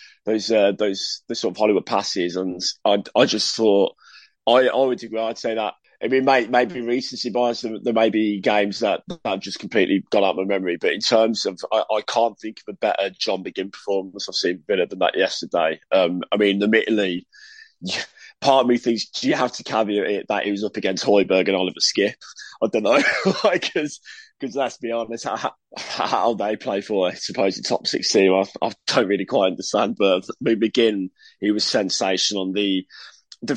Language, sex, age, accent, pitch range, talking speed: English, male, 20-39, British, 100-125 Hz, 215 wpm